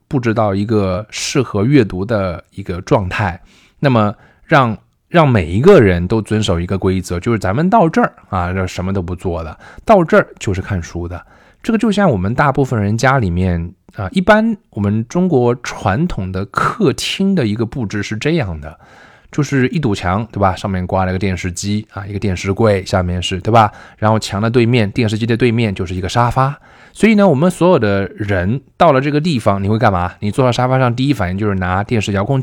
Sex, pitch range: male, 95-140 Hz